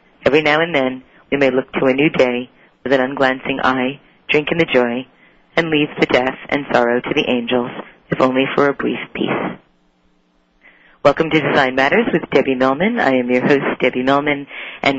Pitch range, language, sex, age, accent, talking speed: 130-150 Hz, English, female, 40-59, American, 190 wpm